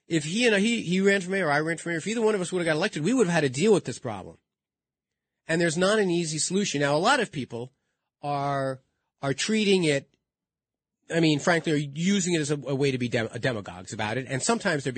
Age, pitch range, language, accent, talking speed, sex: 40-59, 110-160 Hz, English, American, 255 wpm, male